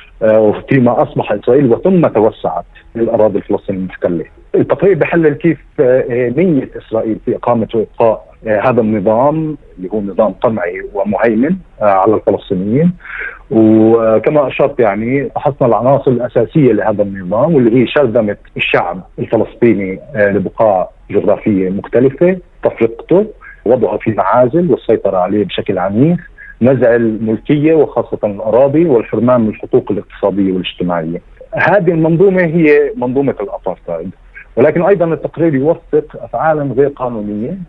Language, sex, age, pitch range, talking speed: Arabic, male, 40-59, 110-155 Hz, 110 wpm